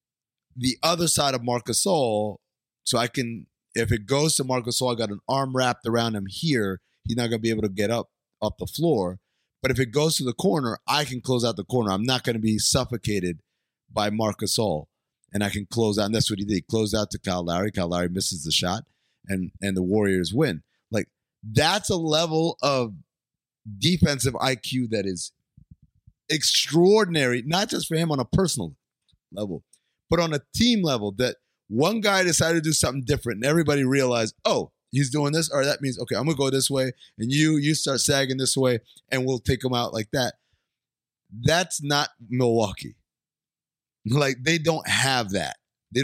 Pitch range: 110-145 Hz